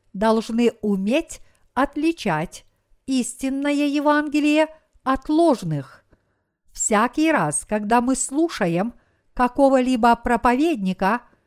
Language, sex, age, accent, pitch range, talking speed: Russian, female, 50-69, native, 205-275 Hz, 75 wpm